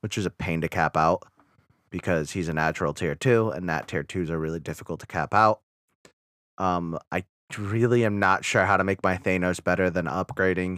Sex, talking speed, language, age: male, 205 wpm, English, 20-39